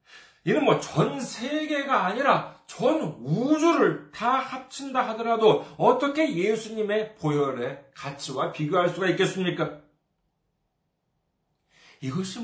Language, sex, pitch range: Korean, male, 155-245 Hz